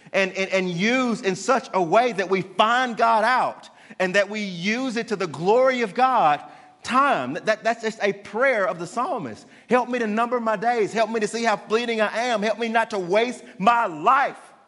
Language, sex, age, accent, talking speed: English, male, 40-59, American, 215 wpm